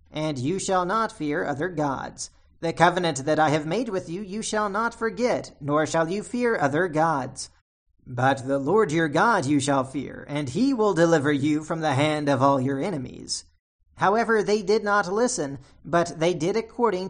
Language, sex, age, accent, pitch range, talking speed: English, male, 40-59, American, 150-210 Hz, 190 wpm